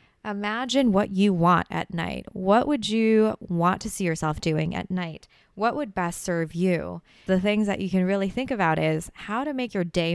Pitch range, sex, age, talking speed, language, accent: 170-210 Hz, female, 20-39, 205 wpm, English, American